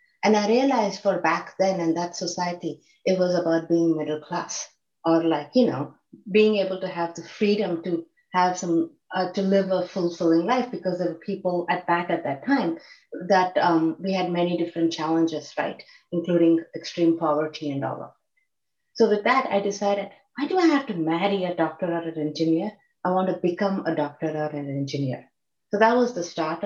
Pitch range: 170-210 Hz